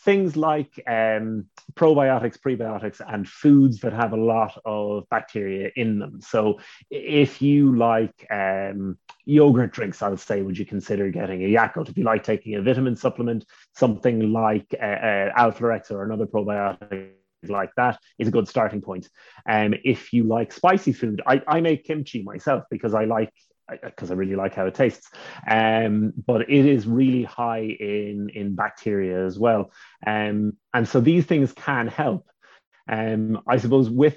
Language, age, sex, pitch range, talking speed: English, 30-49, male, 105-125 Hz, 170 wpm